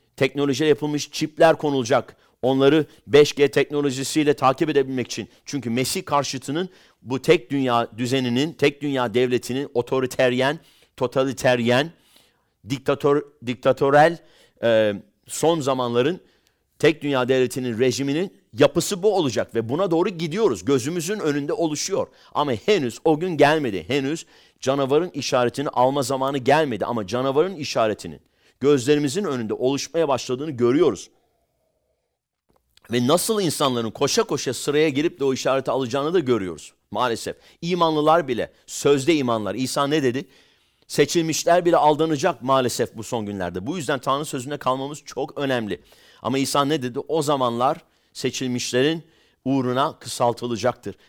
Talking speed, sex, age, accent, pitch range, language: 120 wpm, male, 50-69, Turkish, 125-150 Hz, English